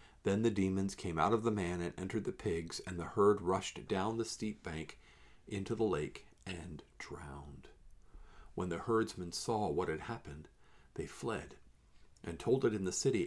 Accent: American